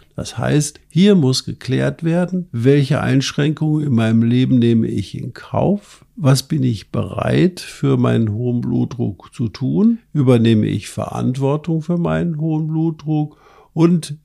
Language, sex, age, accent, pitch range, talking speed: German, male, 50-69, German, 115-150 Hz, 140 wpm